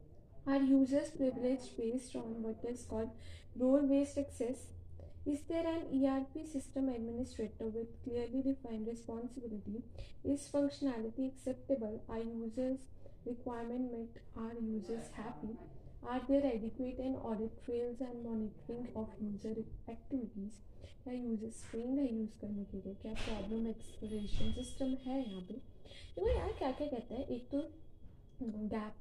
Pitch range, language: 225-270 Hz, Hindi